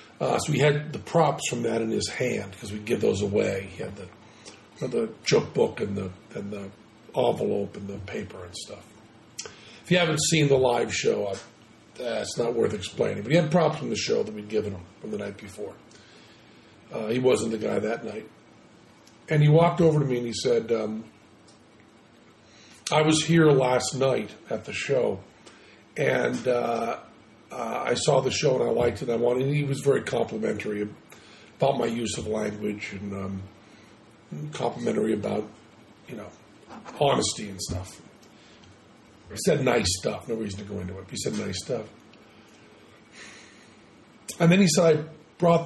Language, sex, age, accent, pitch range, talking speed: English, male, 50-69, American, 105-140 Hz, 180 wpm